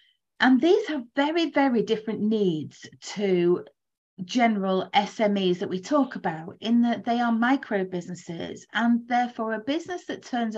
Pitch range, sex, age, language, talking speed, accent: 180-235 Hz, female, 30-49, English, 145 wpm, British